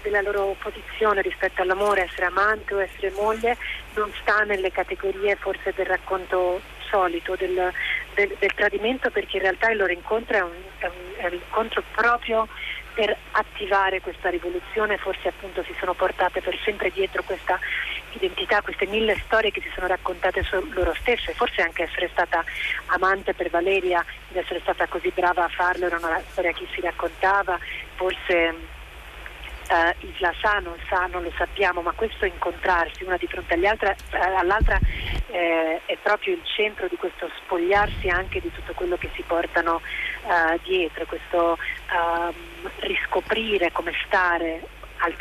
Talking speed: 160 wpm